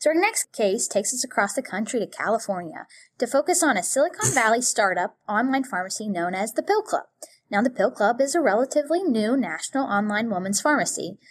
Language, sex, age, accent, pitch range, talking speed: English, female, 10-29, American, 215-325 Hz, 195 wpm